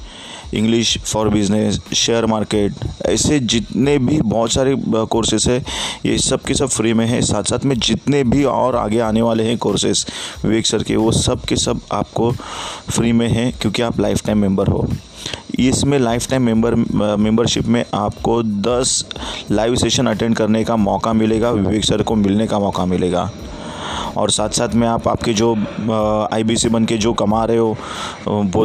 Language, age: Hindi, 30-49